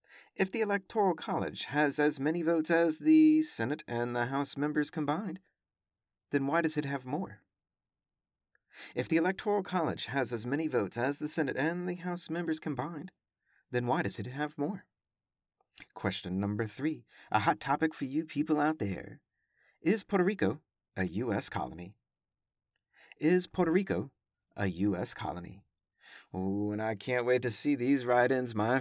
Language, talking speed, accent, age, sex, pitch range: English, 160 wpm, American, 40-59, male, 105-155 Hz